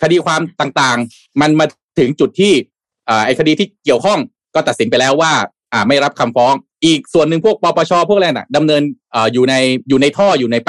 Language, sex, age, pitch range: Thai, male, 20-39, 125-180 Hz